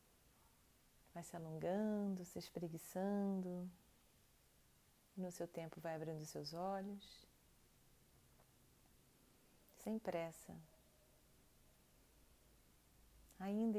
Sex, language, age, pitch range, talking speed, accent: female, Portuguese, 40-59, 160-190 Hz, 65 wpm, Brazilian